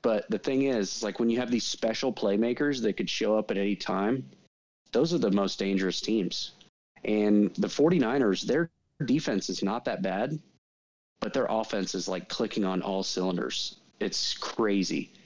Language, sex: English, male